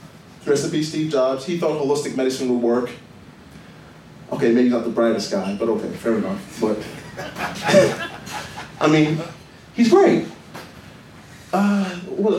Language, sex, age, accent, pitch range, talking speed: English, male, 30-49, American, 130-185 Hz, 115 wpm